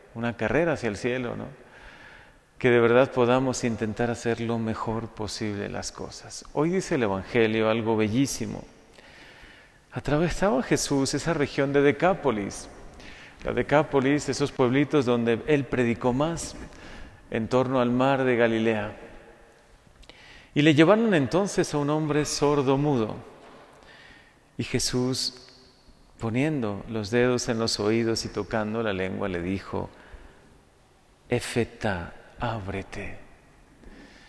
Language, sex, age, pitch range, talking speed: Spanish, male, 40-59, 115-145 Hz, 120 wpm